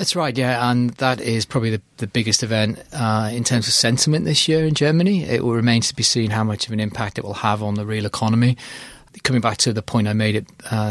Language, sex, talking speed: English, male, 255 wpm